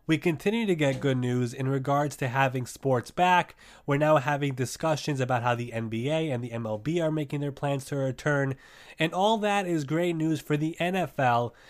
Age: 20-39